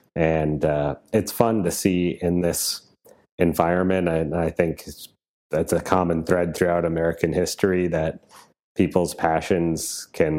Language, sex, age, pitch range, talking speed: English, male, 30-49, 75-85 Hz, 140 wpm